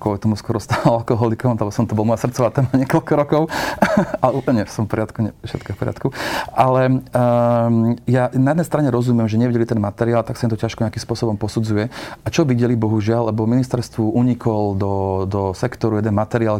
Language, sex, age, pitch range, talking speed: Slovak, male, 30-49, 110-125 Hz, 190 wpm